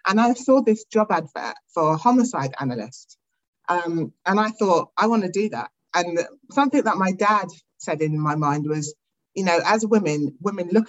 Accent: British